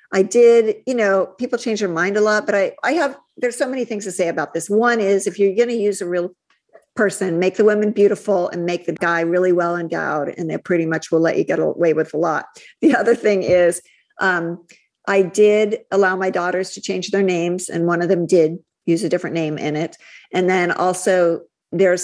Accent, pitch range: American, 165-195 Hz